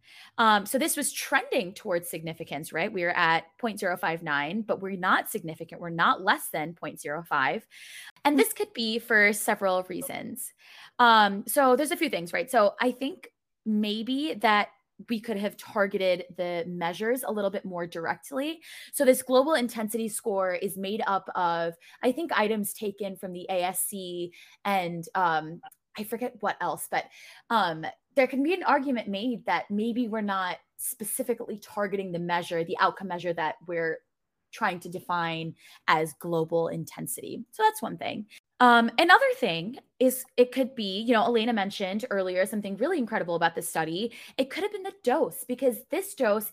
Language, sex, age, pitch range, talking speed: English, female, 20-39, 175-245 Hz, 170 wpm